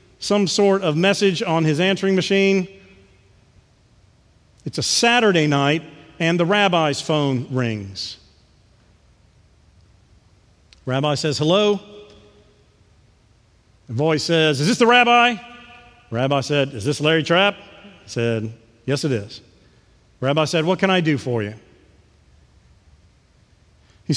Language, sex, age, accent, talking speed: English, male, 40-59, American, 115 wpm